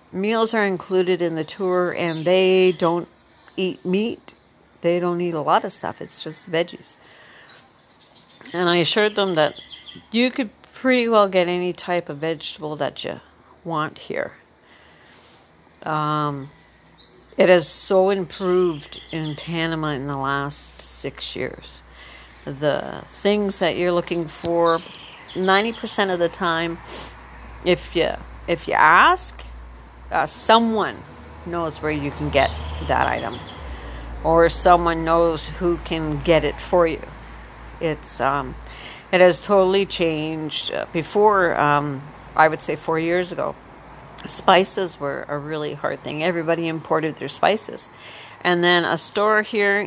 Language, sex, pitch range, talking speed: English, female, 155-185 Hz, 135 wpm